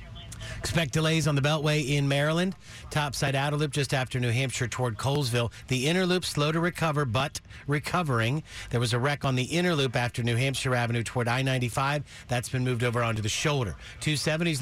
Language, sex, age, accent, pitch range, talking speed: English, male, 50-69, American, 120-140 Hz, 190 wpm